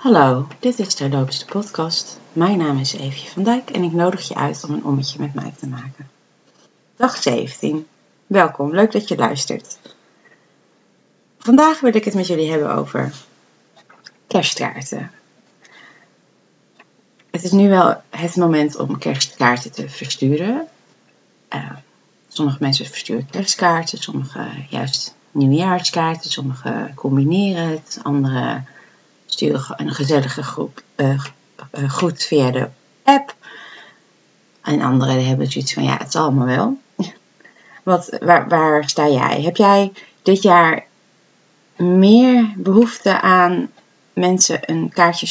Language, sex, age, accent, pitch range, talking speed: Dutch, female, 30-49, Dutch, 140-190 Hz, 125 wpm